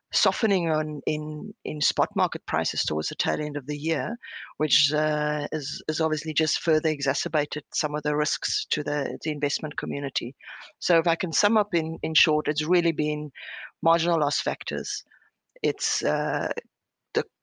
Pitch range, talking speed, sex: 150-170 Hz, 170 wpm, female